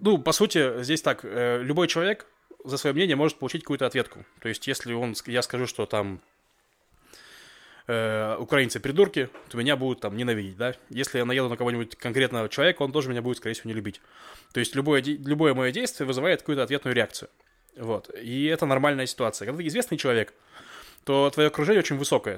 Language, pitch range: Russian, 120-150 Hz